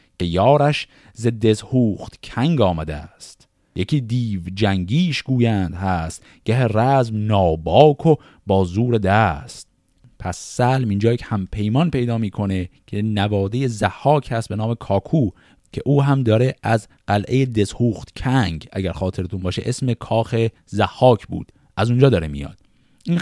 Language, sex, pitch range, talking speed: Persian, male, 95-140 Hz, 135 wpm